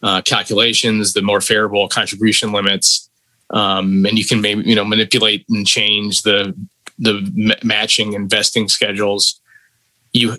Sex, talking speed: male, 140 wpm